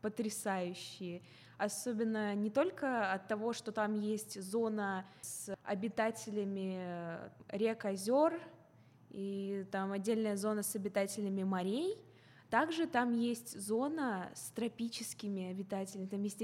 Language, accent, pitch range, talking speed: Russian, native, 200-235 Hz, 110 wpm